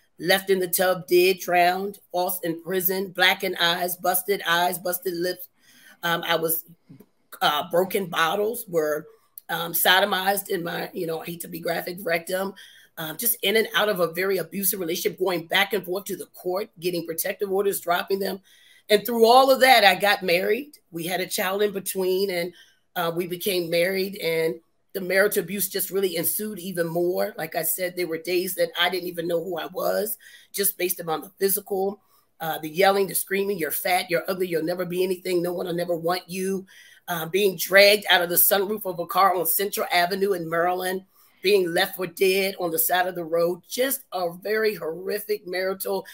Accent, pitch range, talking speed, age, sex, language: American, 175-200 Hz, 200 wpm, 30-49, female, English